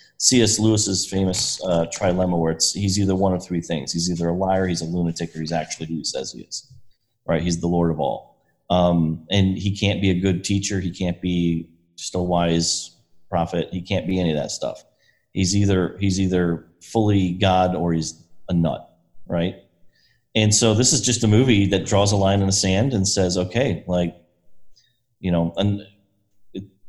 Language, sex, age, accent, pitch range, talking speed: English, male, 30-49, American, 90-105 Hz, 200 wpm